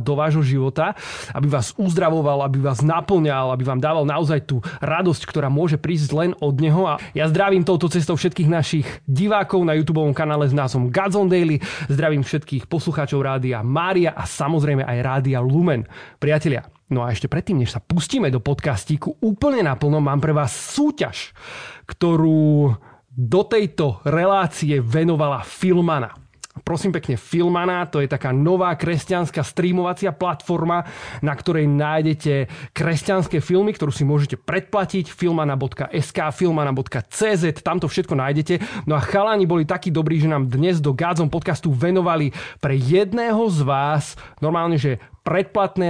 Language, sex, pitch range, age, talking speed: Slovak, male, 145-175 Hz, 30-49, 150 wpm